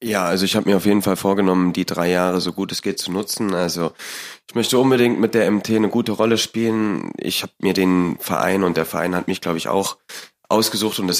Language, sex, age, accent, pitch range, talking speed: German, male, 30-49, German, 85-105 Hz, 240 wpm